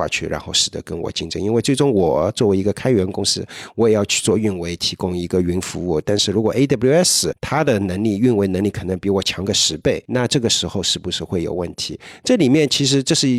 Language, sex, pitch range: Chinese, male, 90-105 Hz